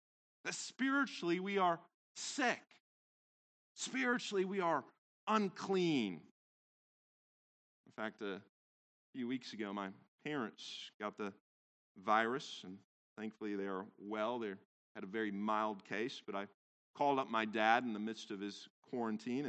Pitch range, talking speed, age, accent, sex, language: 100-160 Hz, 130 wpm, 40-59, American, male, English